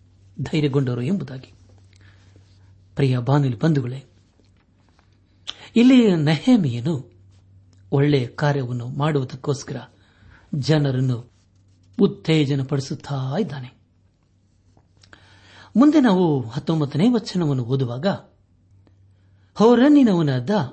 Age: 60-79